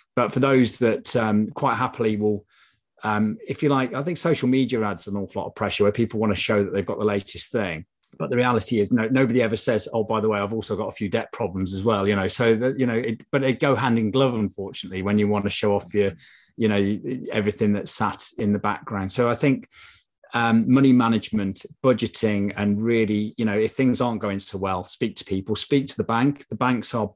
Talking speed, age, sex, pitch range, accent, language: 245 wpm, 30-49, male, 100-125 Hz, British, English